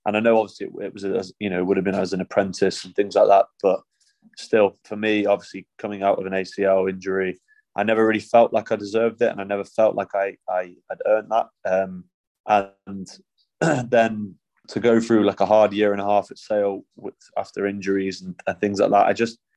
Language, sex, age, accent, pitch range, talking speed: English, male, 20-39, British, 100-110 Hz, 225 wpm